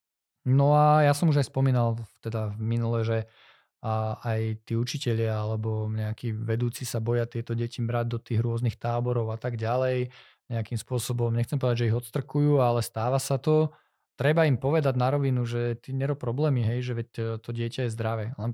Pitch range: 115-140 Hz